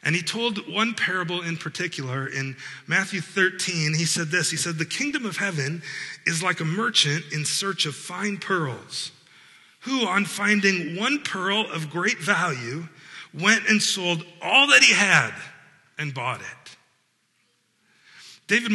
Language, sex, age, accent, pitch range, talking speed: English, male, 40-59, American, 145-190 Hz, 150 wpm